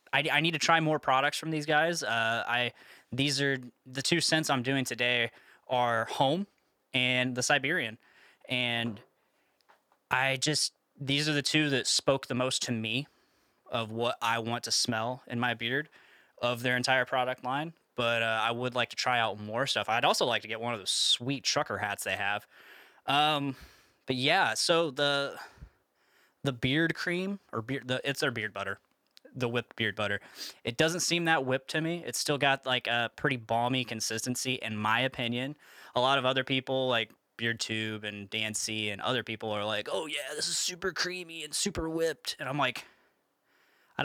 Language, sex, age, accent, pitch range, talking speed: English, male, 10-29, American, 115-140 Hz, 195 wpm